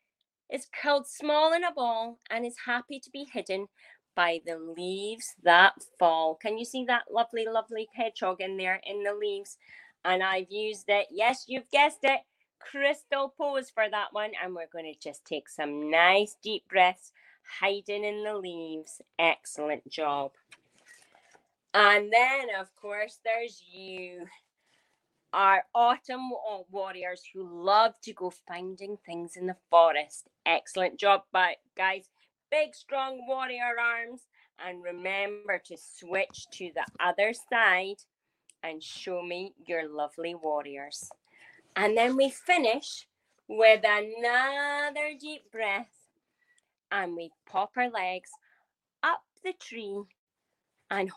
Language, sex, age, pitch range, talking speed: English, female, 30-49, 180-255 Hz, 135 wpm